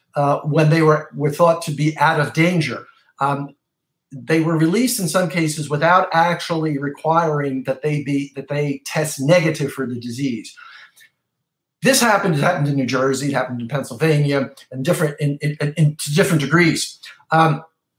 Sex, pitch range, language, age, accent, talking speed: male, 135-170 Hz, English, 50-69, American, 170 wpm